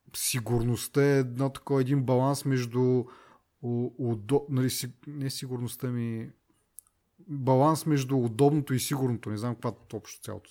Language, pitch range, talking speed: Bulgarian, 115-150 Hz, 120 wpm